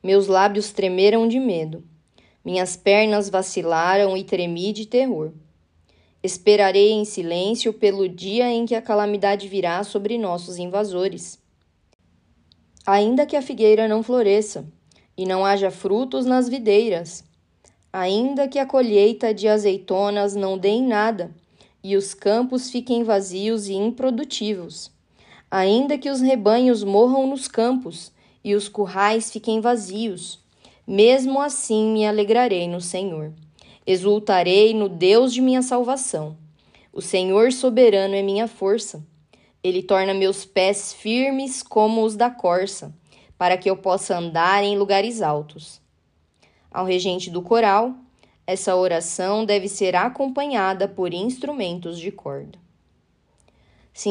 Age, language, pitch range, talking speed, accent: 10-29, Portuguese, 185-225 Hz, 130 wpm, Brazilian